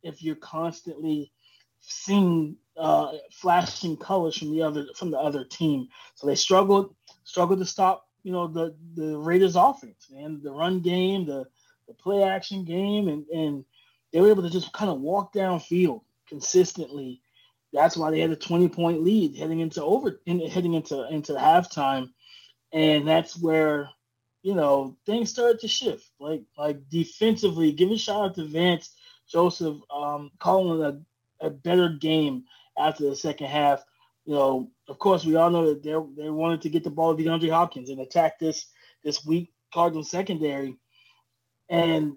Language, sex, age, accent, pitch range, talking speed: English, male, 20-39, American, 150-180 Hz, 170 wpm